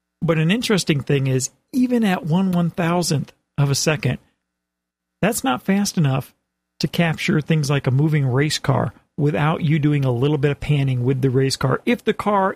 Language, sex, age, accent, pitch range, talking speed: English, male, 40-59, American, 140-220 Hz, 185 wpm